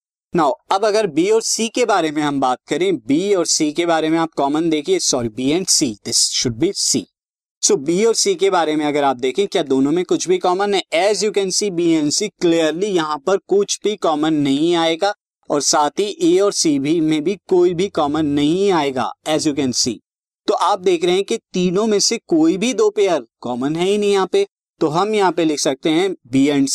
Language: Hindi